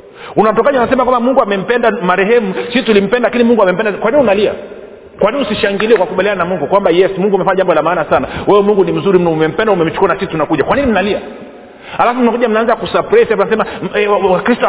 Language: Swahili